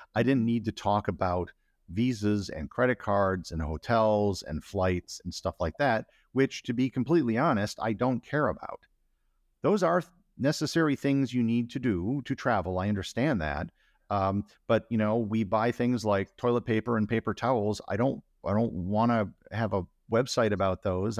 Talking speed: 180 wpm